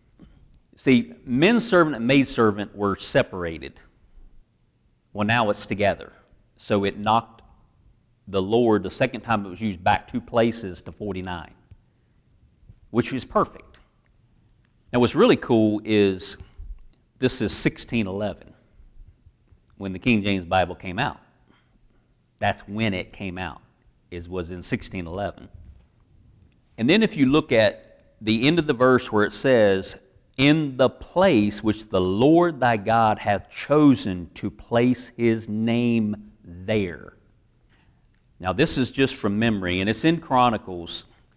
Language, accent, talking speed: English, American, 135 wpm